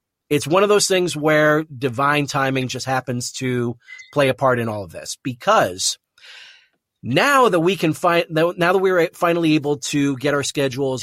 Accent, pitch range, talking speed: American, 125-155 Hz, 185 wpm